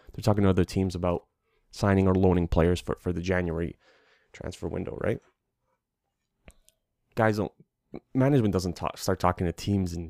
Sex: male